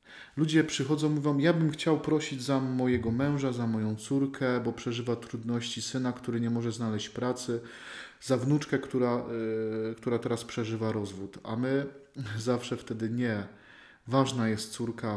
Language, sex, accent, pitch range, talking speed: Polish, male, native, 115-130 Hz, 150 wpm